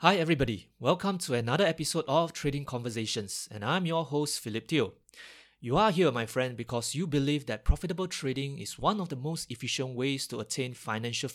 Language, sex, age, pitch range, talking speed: English, male, 20-39, 125-170 Hz, 190 wpm